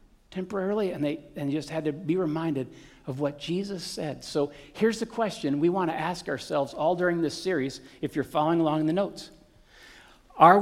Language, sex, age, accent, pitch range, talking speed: English, male, 50-69, American, 155-195 Hz, 190 wpm